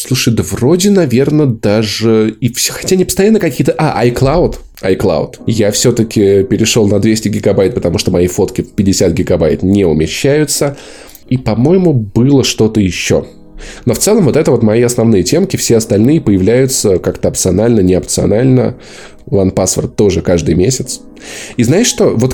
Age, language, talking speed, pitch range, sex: 20-39, Russian, 155 wpm, 105-130 Hz, male